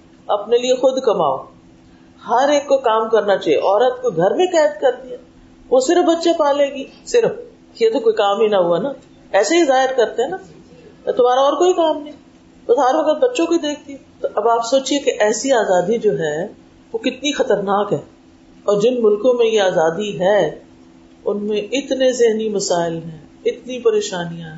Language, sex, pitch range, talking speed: Urdu, female, 210-315 Hz, 175 wpm